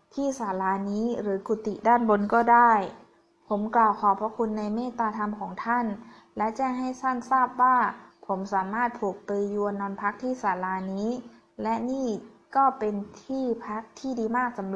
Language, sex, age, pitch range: Thai, female, 20-39, 200-240 Hz